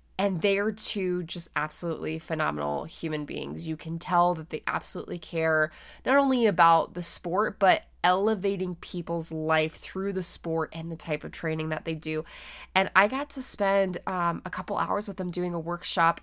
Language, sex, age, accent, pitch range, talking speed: English, female, 20-39, American, 165-215 Hz, 185 wpm